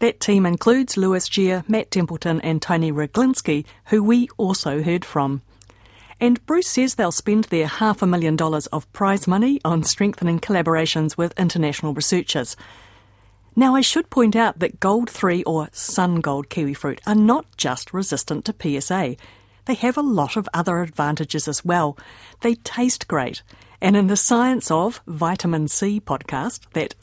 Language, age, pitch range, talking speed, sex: English, 50-69, 150-205 Hz, 165 wpm, female